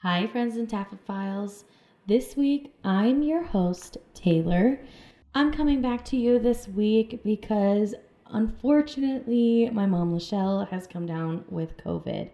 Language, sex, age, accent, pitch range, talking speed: English, female, 10-29, American, 170-225 Hz, 130 wpm